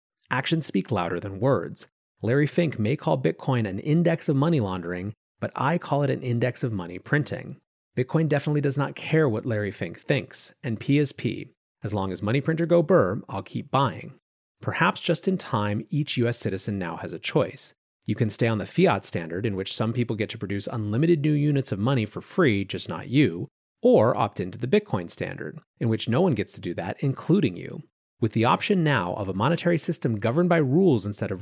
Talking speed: 210 wpm